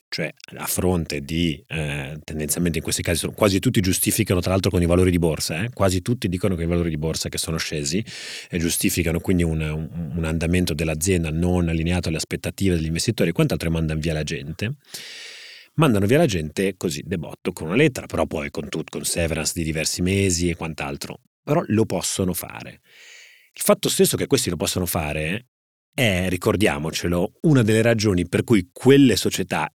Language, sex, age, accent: Italian, male, 30-49, native